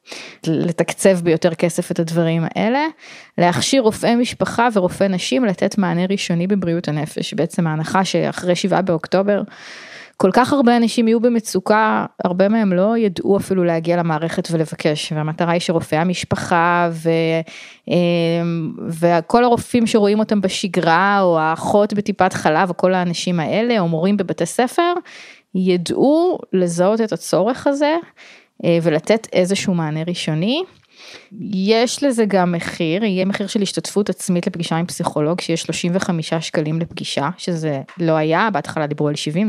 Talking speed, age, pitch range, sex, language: 135 wpm, 20-39, 165-210 Hz, female, Hebrew